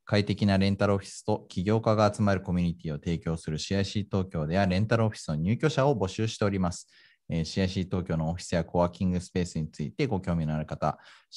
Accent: native